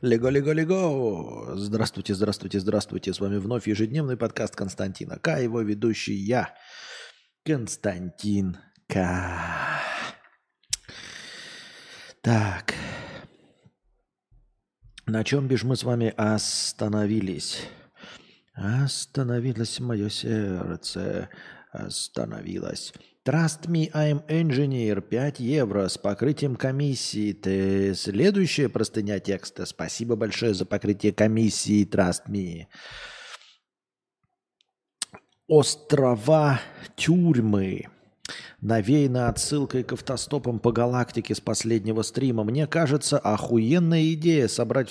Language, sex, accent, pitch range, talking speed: Russian, male, native, 105-150 Hz, 85 wpm